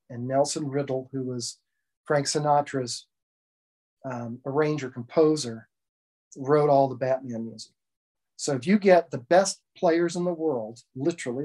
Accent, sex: American, male